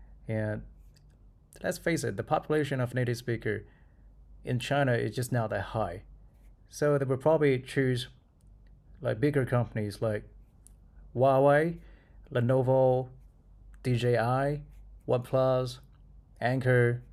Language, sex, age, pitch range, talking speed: English, male, 20-39, 110-135 Hz, 105 wpm